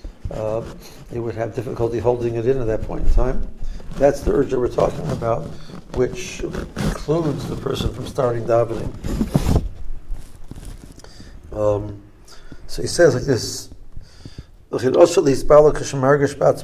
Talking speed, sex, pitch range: 110 wpm, male, 115-150 Hz